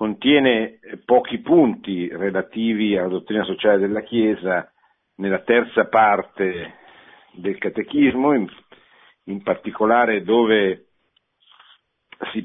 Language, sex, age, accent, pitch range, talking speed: Italian, male, 50-69, native, 95-115 Hz, 85 wpm